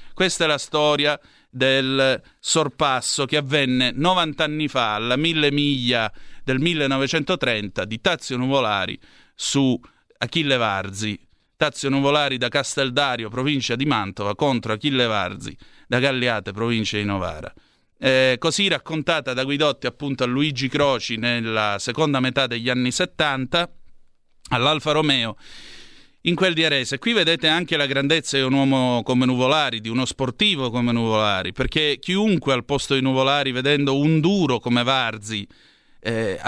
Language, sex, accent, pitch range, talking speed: Italian, male, native, 120-150 Hz, 140 wpm